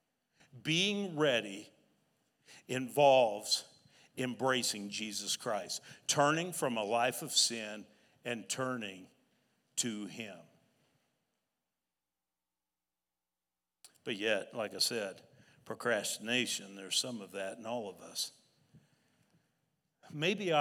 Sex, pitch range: male, 110-135 Hz